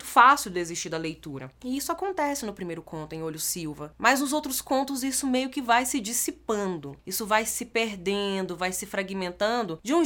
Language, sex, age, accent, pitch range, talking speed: Portuguese, female, 20-39, Brazilian, 185-265 Hz, 190 wpm